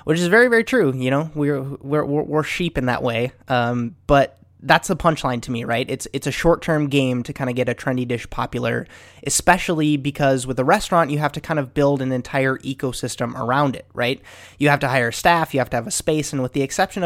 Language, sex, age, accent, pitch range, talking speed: English, male, 20-39, American, 125-150 Hz, 235 wpm